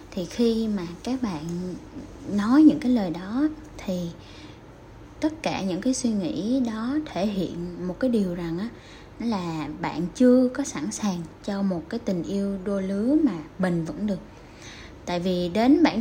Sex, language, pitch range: female, Vietnamese, 170-240 Hz